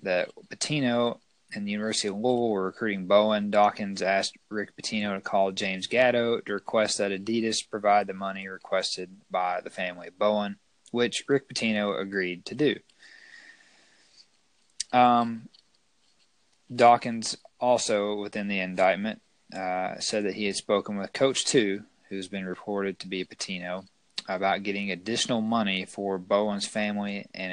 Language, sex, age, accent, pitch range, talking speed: English, male, 20-39, American, 95-110 Hz, 145 wpm